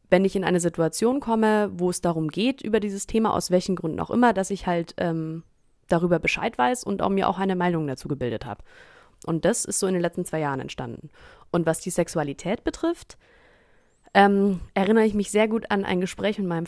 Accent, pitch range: German, 165-210 Hz